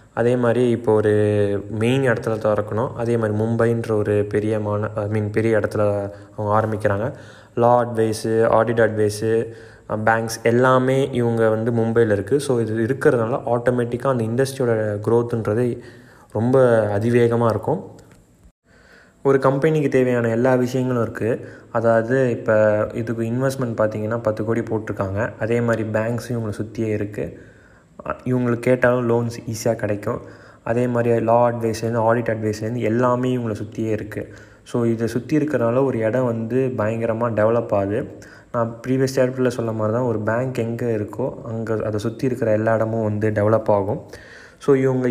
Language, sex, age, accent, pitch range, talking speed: Tamil, male, 20-39, native, 110-125 Hz, 140 wpm